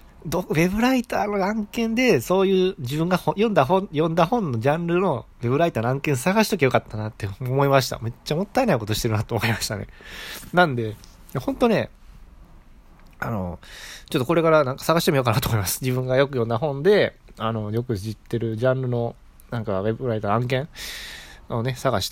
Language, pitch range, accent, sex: Japanese, 110-160 Hz, native, male